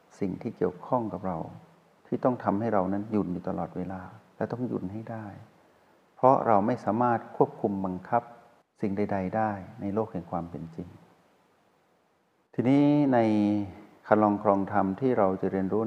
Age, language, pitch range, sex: 60-79, Thai, 95-115 Hz, male